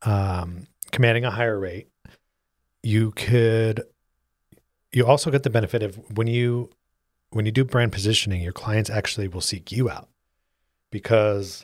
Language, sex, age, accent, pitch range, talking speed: English, male, 30-49, American, 95-120 Hz, 145 wpm